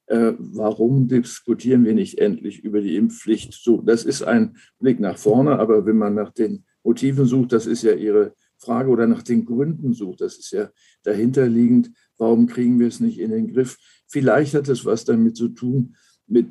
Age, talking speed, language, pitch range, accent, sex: 50-69, 190 wpm, German, 110-135 Hz, German, male